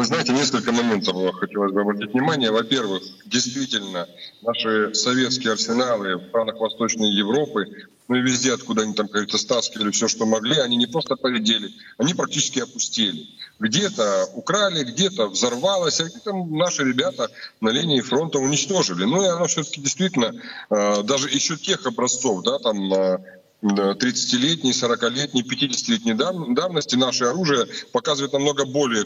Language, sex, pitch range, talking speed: Russian, male, 115-155 Hz, 140 wpm